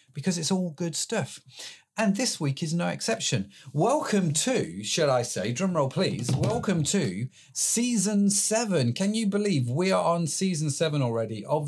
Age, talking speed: 40-59, 165 wpm